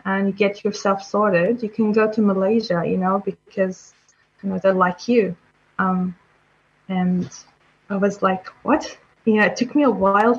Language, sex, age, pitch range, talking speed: Arabic, female, 20-39, 190-220 Hz, 180 wpm